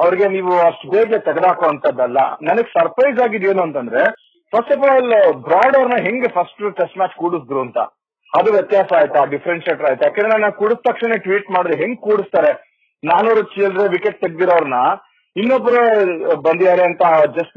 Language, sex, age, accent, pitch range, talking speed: Kannada, male, 40-59, native, 150-210 Hz, 145 wpm